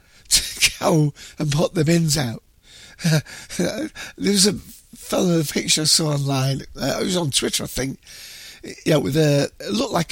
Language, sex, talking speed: English, male, 185 wpm